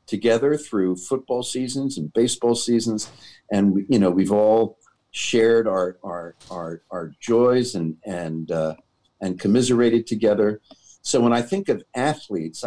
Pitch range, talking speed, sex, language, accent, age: 100-130 Hz, 140 wpm, male, English, American, 50-69